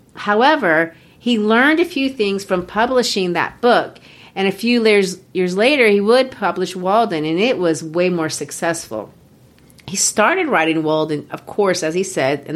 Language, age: English, 40-59